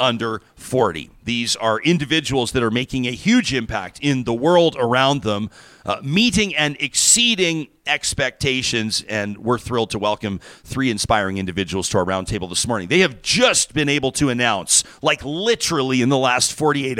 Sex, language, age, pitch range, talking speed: male, English, 40-59, 120-155 Hz, 165 wpm